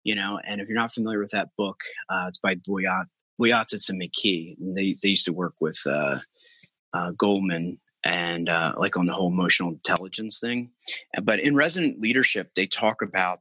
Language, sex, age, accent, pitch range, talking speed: English, male, 30-49, American, 90-105 Hz, 190 wpm